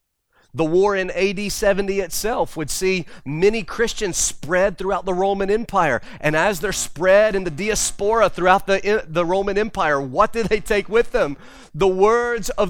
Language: English